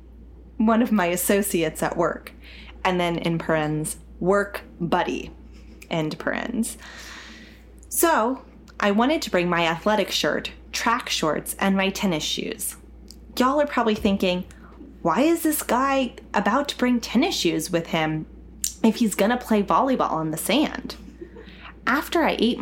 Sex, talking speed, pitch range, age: female, 145 wpm, 175-245 Hz, 20-39